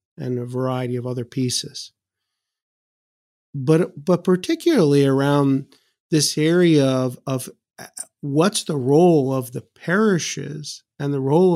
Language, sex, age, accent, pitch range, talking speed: English, male, 50-69, American, 130-160 Hz, 120 wpm